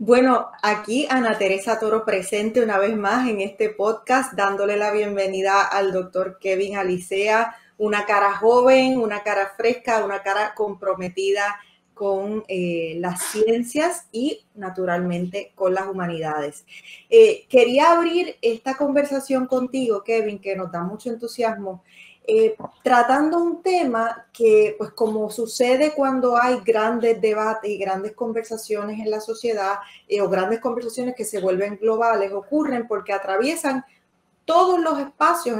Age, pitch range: 20-39, 200-260 Hz